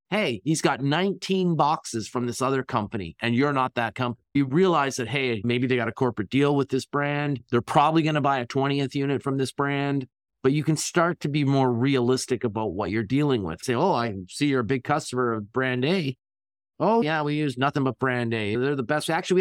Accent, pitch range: American, 120-155 Hz